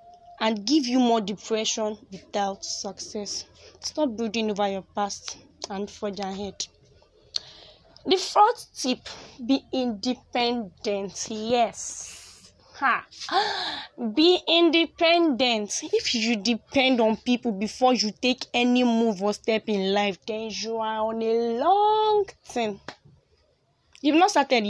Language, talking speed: English, 115 wpm